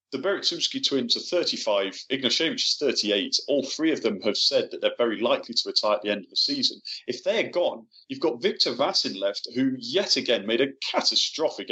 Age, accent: 30-49, British